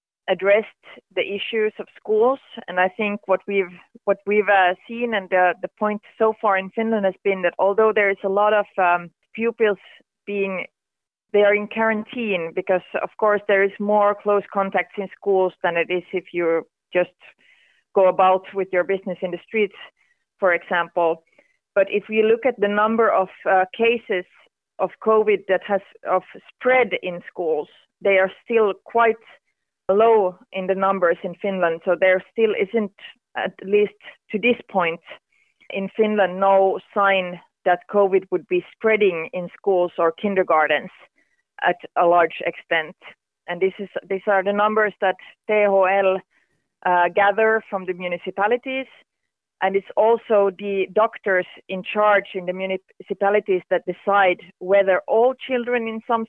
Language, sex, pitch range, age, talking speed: Finnish, female, 185-220 Hz, 30-49, 160 wpm